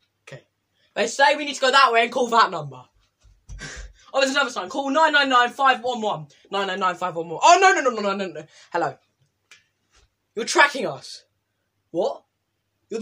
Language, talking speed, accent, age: English, 150 wpm, British, 10-29